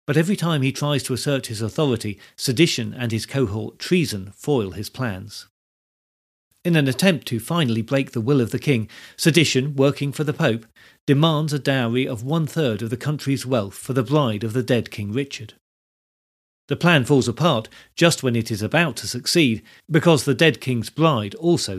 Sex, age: male, 40-59